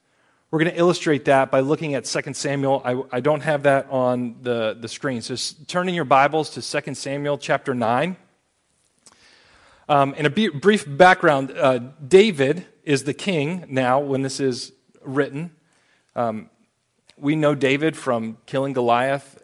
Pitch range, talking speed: 135-170 Hz, 155 wpm